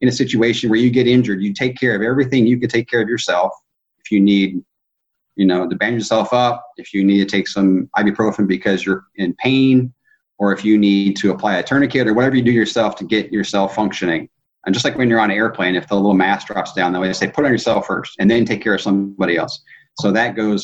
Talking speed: 250 wpm